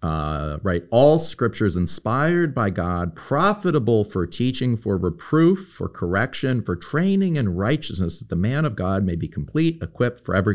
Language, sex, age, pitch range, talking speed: English, male, 40-59, 90-120 Hz, 165 wpm